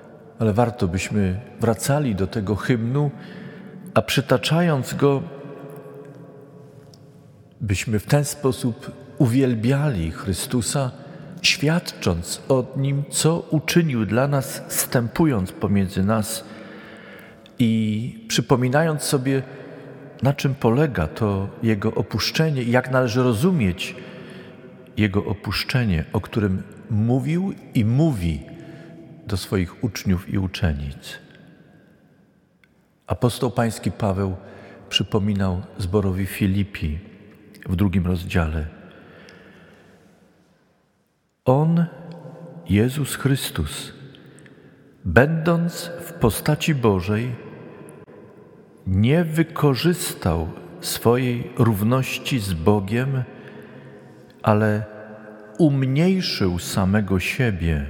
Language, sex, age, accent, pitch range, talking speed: Polish, male, 50-69, native, 105-145 Hz, 80 wpm